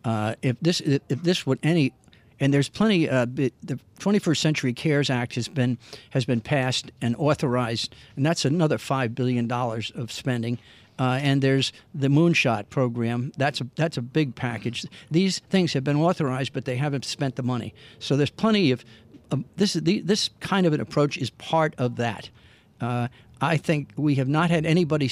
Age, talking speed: 50-69, 175 wpm